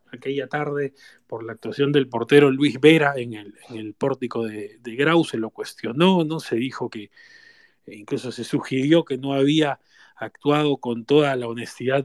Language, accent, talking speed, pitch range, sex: Spanish, Argentinian, 175 wpm, 125-160 Hz, male